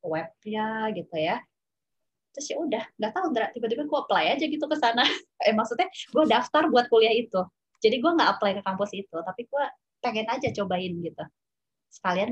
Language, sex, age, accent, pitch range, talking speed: Indonesian, female, 20-39, native, 185-240 Hz, 185 wpm